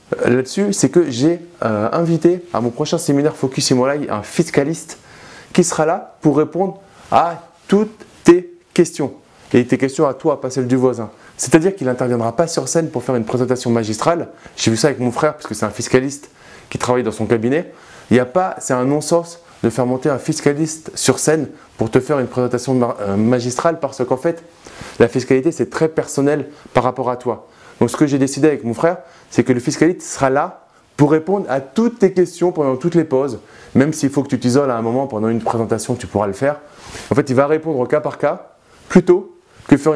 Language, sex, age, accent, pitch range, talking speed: French, male, 20-39, French, 120-155 Hz, 215 wpm